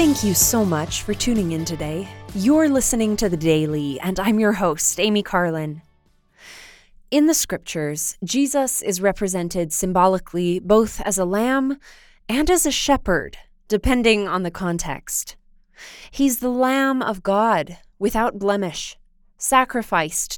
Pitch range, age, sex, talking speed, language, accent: 185-235 Hz, 20-39, female, 135 wpm, English, American